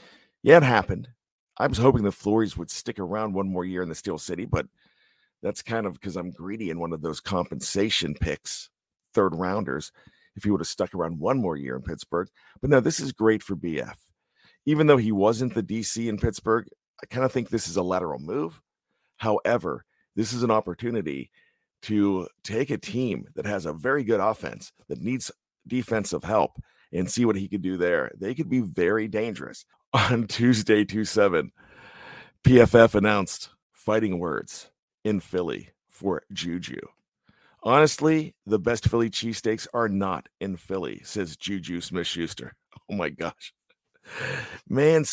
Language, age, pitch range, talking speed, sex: English, 50-69, 95-115 Hz, 170 wpm, male